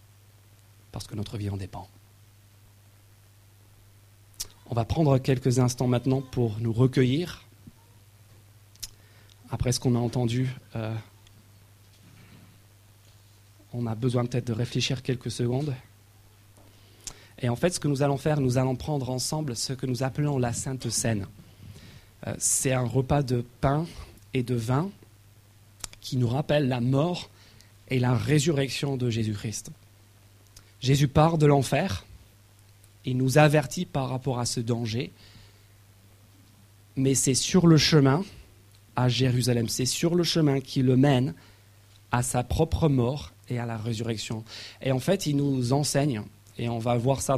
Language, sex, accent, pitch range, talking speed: French, male, French, 105-130 Hz, 140 wpm